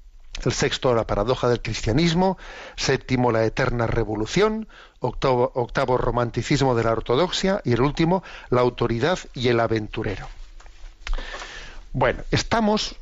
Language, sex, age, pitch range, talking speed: Spanish, male, 50-69, 120-140 Hz, 120 wpm